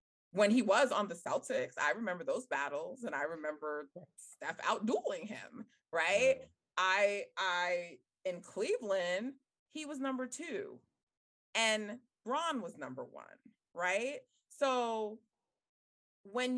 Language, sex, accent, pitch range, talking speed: English, female, American, 200-295 Hz, 120 wpm